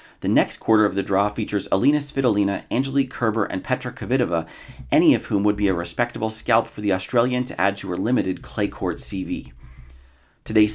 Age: 30-49